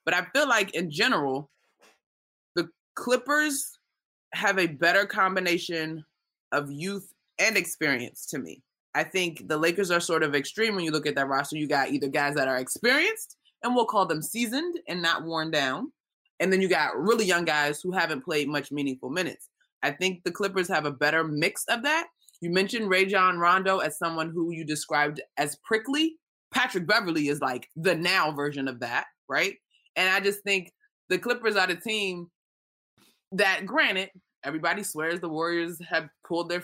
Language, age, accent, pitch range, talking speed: English, 20-39, American, 155-215 Hz, 180 wpm